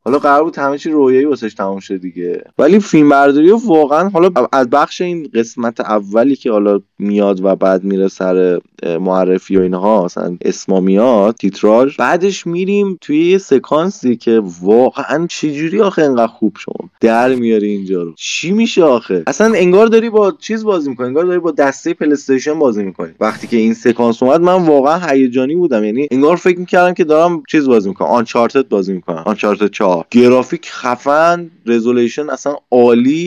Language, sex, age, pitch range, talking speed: Persian, male, 20-39, 105-160 Hz, 160 wpm